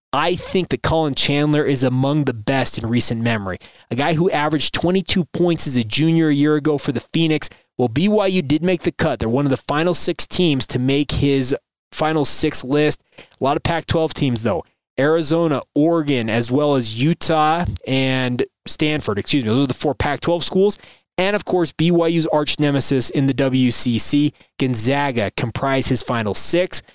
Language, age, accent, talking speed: English, 20-39, American, 185 wpm